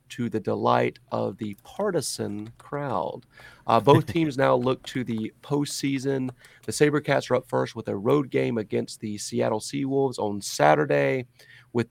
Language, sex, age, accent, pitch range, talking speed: English, male, 30-49, American, 110-135 Hz, 155 wpm